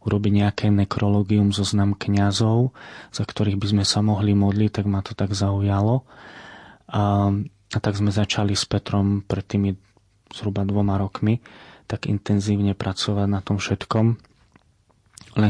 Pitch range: 100-110 Hz